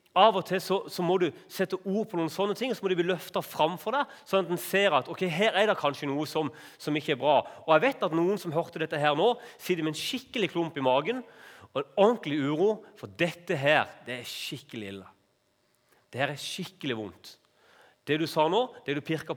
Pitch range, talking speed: 130-180 Hz, 240 wpm